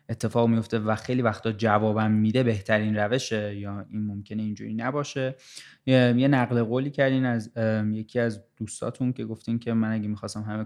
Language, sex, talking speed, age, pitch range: English, male, 165 wpm, 20-39, 110-125 Hz